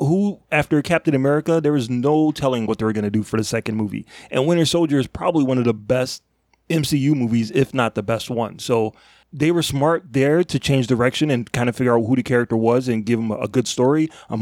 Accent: American